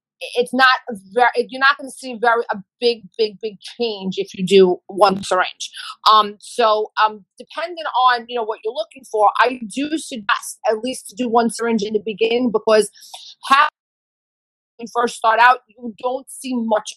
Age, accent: 40-59, American